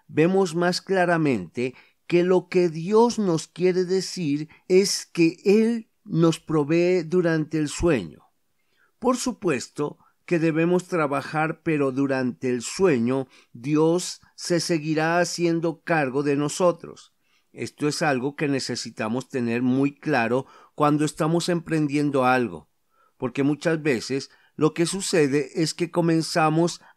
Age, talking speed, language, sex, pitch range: 40-59, 120 wpm, Spanish, male, 135-170 Hz